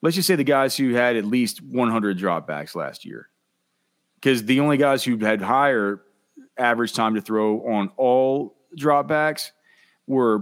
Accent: American